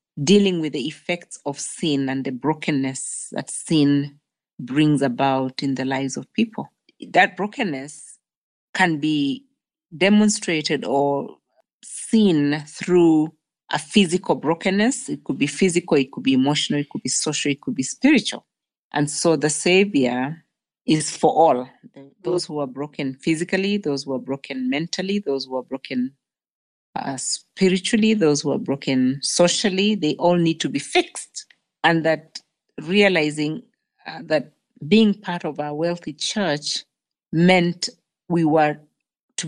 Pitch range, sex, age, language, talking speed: 145-185 Hz, female, 40-59, English, 145 wpm